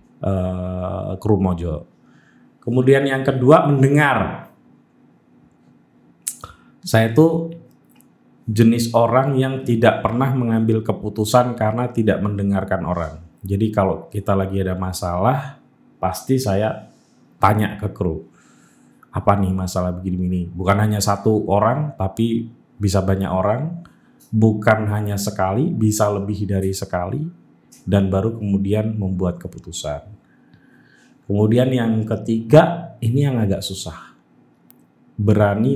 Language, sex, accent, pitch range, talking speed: Indonesian, male, native, 95-120 Hz, 105 wpm